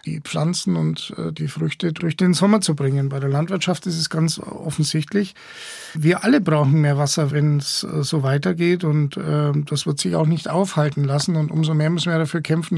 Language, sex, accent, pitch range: German, male, German, 150-175 Hz